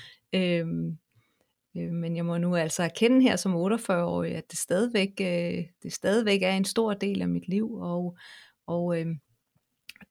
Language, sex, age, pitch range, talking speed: Danish, female, 30-49, 175-200 Hz, 155 wpm